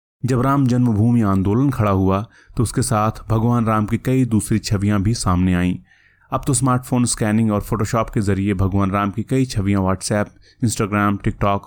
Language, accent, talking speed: Hindi, native, 175 wpm